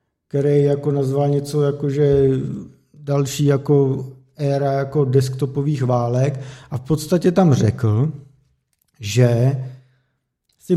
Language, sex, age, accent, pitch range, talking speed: Czech, male, 50-69, native, 130-150 Hz, 95 wpm